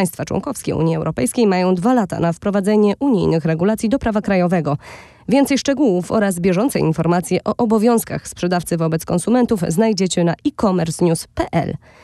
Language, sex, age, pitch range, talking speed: Polish, female, 20-39, 175-225 Hz, 135 wpm